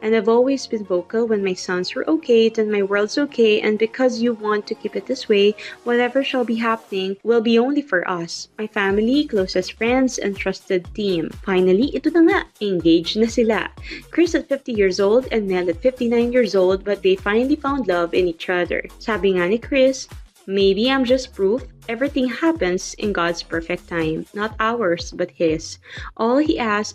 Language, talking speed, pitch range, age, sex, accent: Filipino, 190 wpm, 185-240 Hz, 20-39, female, native